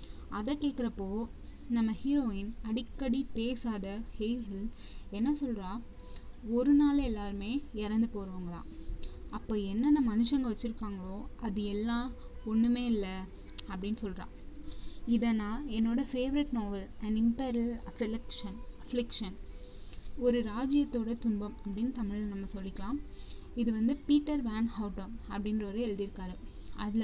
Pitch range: 205-250 Hz